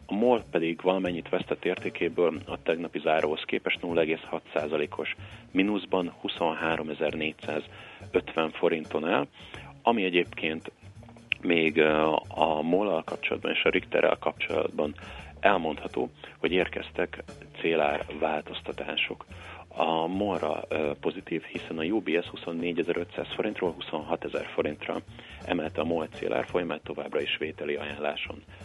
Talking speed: 105 wpm